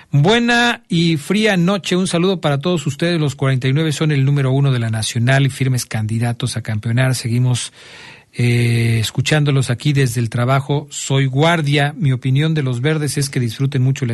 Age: 40-59